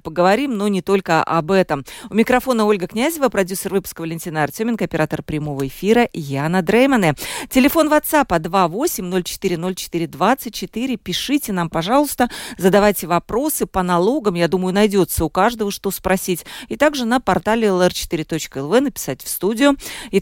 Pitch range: 175-240 Hz